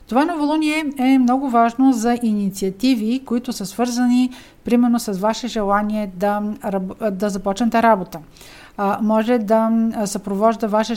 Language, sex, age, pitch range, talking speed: Bulgarian, female, 50-69, 210-245 Hz, 125 wpm